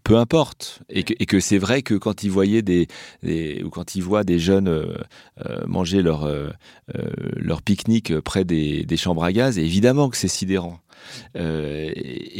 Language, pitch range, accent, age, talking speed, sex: French, 85-110 Hz, French, 30-49, 180 wpm, male